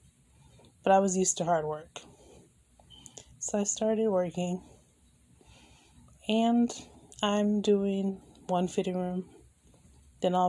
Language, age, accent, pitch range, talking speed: English, 20-39, American, 175-195 Hz, 110 wpm